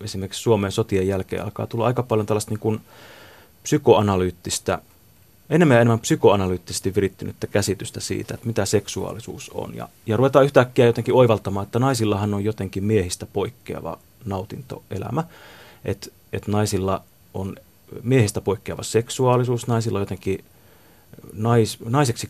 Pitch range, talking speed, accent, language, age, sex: 100-120 Hz, 125 wpm, native, Finnish, 30-49, male